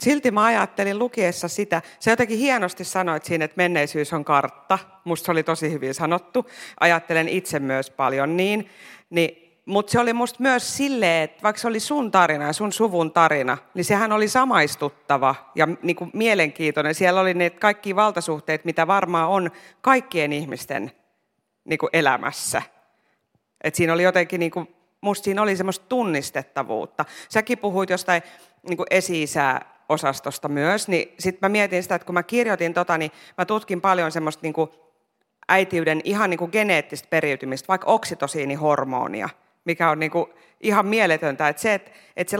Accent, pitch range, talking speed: native, 155-205 Hz, 160 wpm